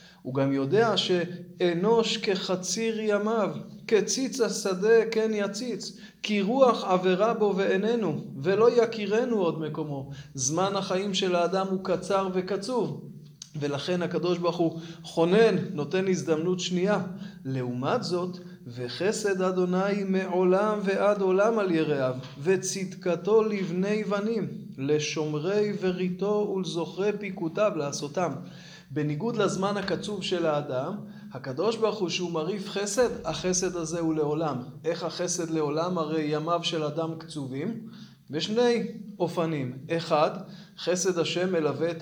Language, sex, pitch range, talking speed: Hebrew, male, 165-205 Hz, 115 wpm